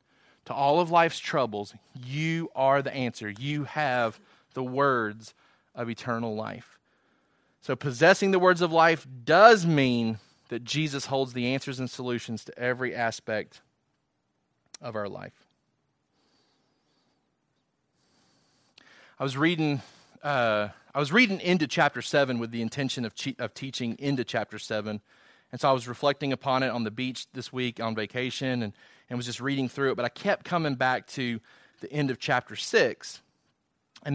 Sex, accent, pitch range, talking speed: male, American, 120-155 Hz, 160 wpm